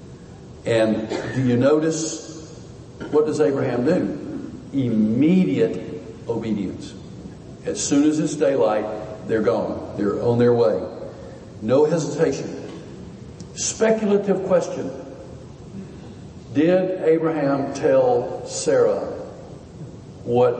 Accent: American